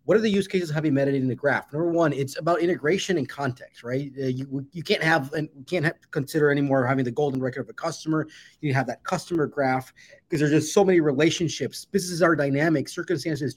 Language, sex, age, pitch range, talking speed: English, male, 30-49, 135-170 Hz, 230 wpm